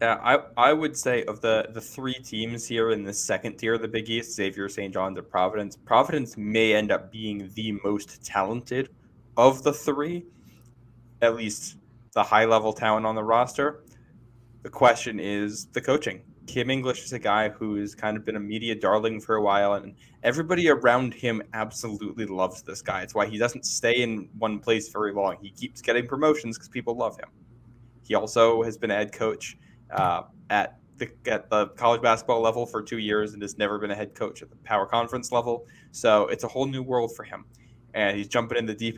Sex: male